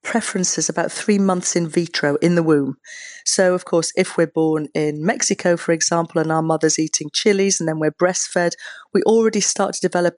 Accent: British